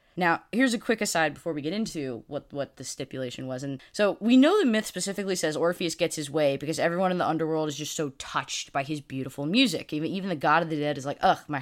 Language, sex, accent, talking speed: English, female, American, 260 wpm